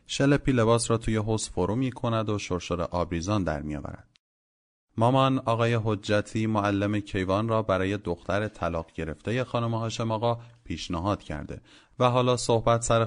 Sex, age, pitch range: male, 30-49, 90-115 Hz